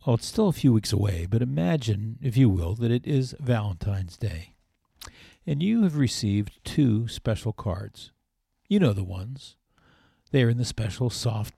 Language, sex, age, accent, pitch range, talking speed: English, male, 50-69, American, 100-125 Hz, 175 wpm